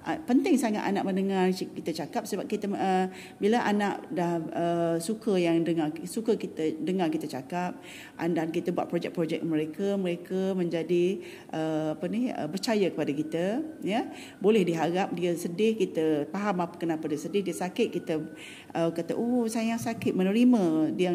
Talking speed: 160 wpm